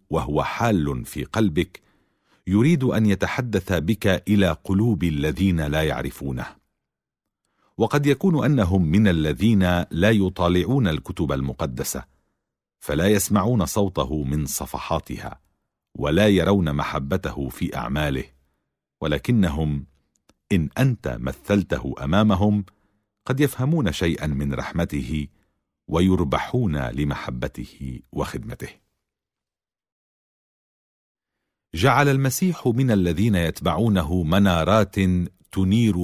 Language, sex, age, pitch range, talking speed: Arabic, male, 50-69, 75-105 Hz, 85 wpm